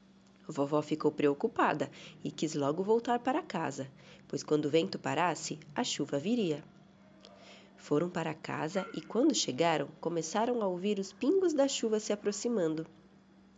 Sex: female